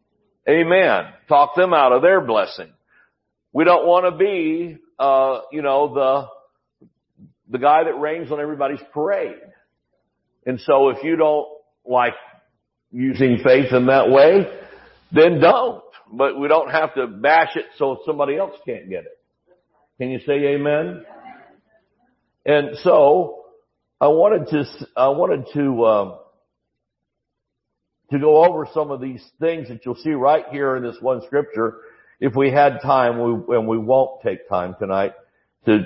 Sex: male